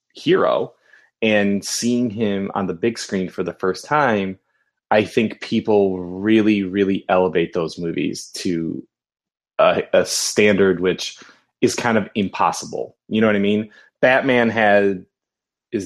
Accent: American